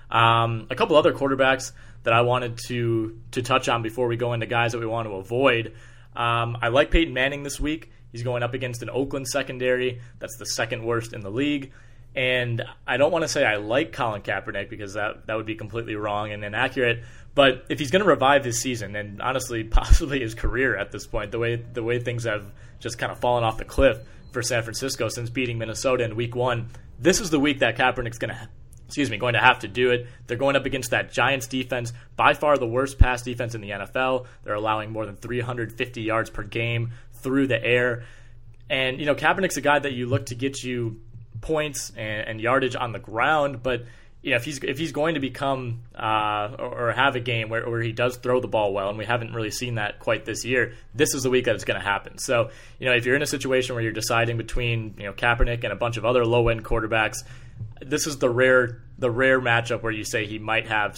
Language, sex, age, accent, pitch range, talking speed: English, male, 20-39, American, 115-130 Hz, 235 wpm